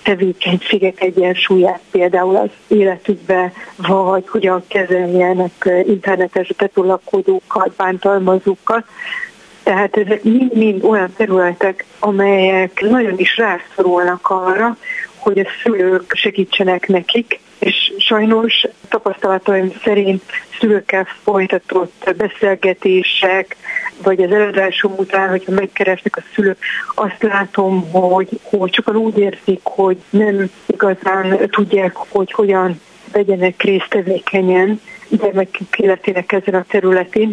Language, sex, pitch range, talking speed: Hungarian, female, 190-215 Hz, 105 wpm